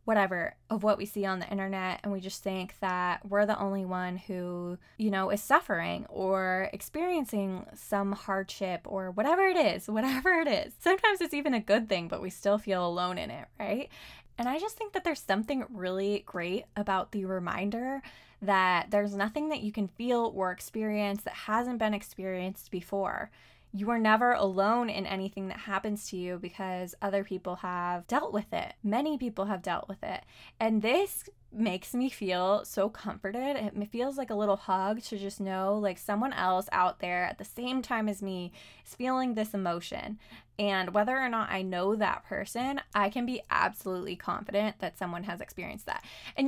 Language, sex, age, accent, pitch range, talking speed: English, female, 20-39, American, 190-225 Hz, 190 wpm